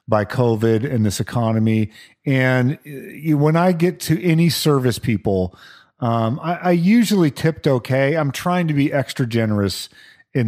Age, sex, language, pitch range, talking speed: 40-59, male, English, 110-155 Hz, 150 wpm